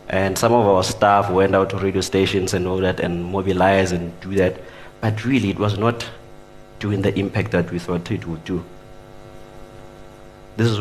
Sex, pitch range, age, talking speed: male, 90-110 Hz, 30-49, 190 wpm